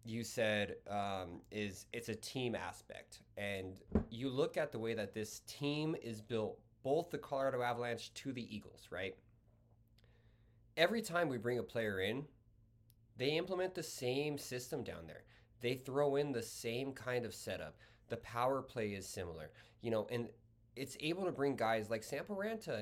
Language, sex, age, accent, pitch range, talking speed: English, male, 20-39, American, 110-135 Hz, 170 wpm